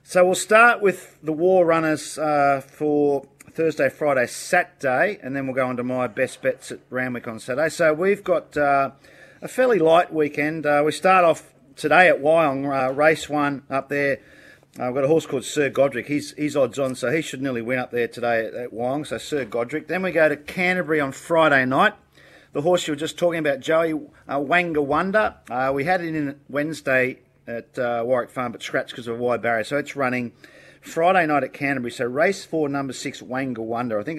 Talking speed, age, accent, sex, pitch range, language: 215 wpm, 40-59, Australian, male, 125-160 Hz, English